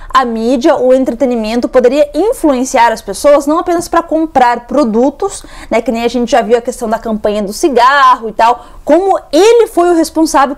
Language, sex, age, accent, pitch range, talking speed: Portuguese, female, 20-39, Brazilian, 240-315 Hz, 185 wpm